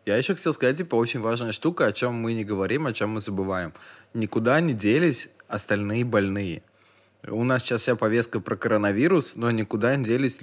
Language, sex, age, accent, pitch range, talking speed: Russian, male, 20-39, native, 100-120 Hz, 190 wpm